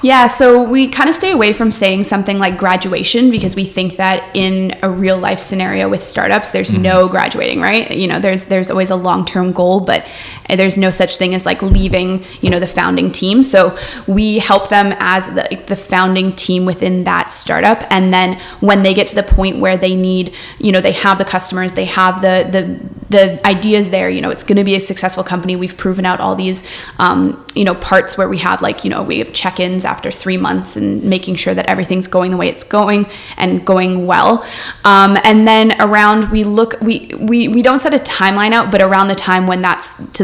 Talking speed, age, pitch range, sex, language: 225 wpm, 20-39, 185-200 Hz, female, English